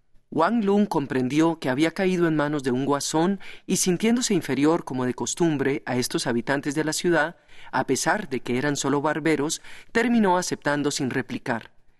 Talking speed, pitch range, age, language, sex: 170 wpm, 135-190 Hz, 40-59, English, male